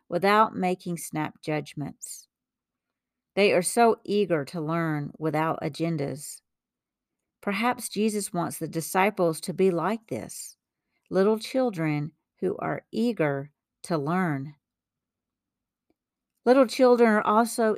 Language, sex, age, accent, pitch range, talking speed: English, female, 50-69, American, 150-205 Hz, 110 wpm